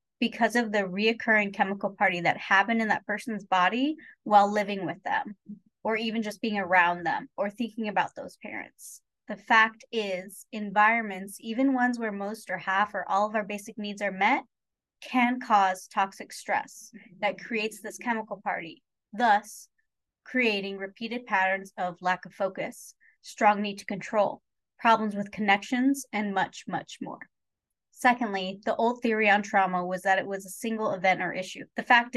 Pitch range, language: 195-235 Hz, English